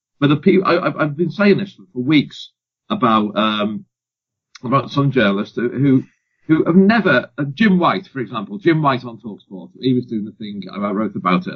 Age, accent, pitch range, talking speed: 40-59, British, 110-145 Hz, 190 wpm